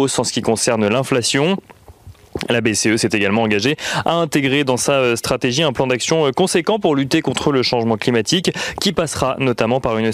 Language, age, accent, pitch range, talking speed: French, 30-49, French, 120-155 Hz, 180 wpm